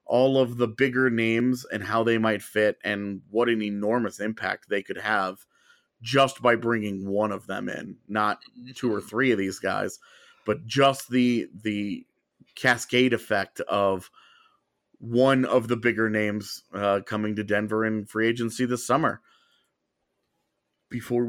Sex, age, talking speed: male, 30-49, 150 wpm